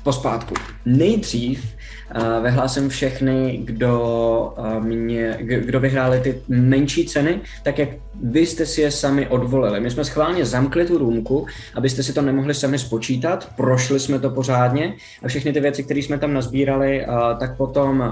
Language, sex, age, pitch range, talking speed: Czech, male, 20-39, 115-140 Hz, 165 wpm